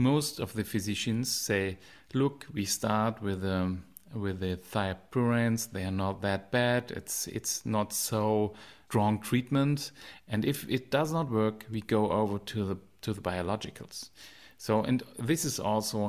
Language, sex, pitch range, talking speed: English, male, 100-125 Hz, 160 wpm